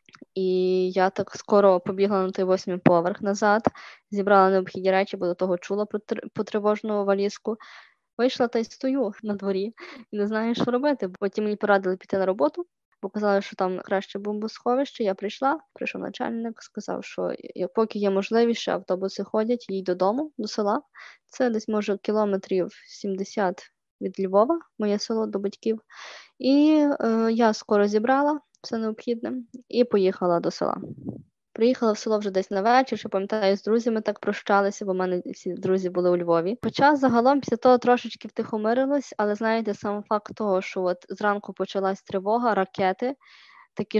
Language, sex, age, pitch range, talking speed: Ukrainian, female, 20-39, 190-225 Hz, 160 wpm